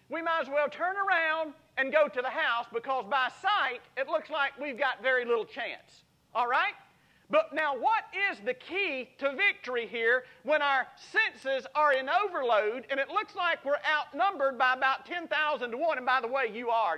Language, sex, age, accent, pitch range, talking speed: English, male, 40-59, American, 245-315 Hz, 200 wpm